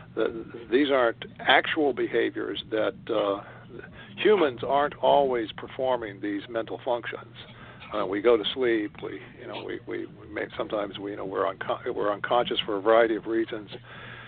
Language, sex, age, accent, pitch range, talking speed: English, male, 60-79, American, 110-160 Hz, 160 wpm